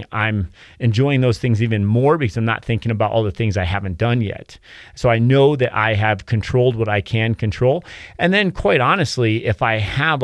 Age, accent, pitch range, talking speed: 30-49, American, 105-130 Hz, 210 wpm